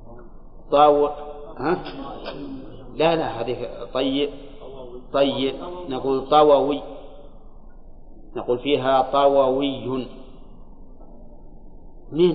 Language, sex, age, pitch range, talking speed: Arabic, male, 40-59, 130-160 Hz, 70 wpm